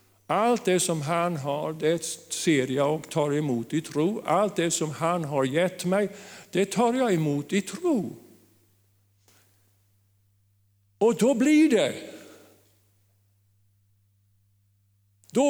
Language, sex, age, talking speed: Swedish, male, 50-69, 120 wpm